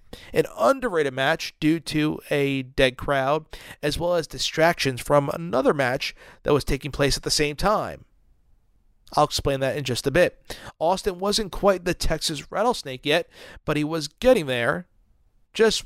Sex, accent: male, American